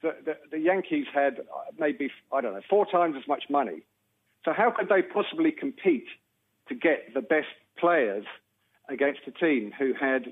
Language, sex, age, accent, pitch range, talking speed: English, male, 50-69, British, 115-150 Hz, 170 wpm